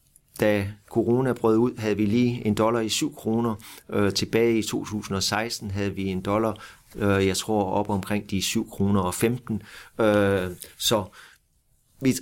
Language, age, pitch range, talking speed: Danish, 30-49, 100-115 Hz, 160 wpm